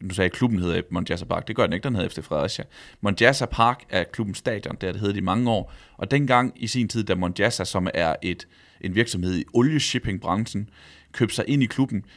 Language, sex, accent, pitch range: Danish, male, native, 90-115 Hz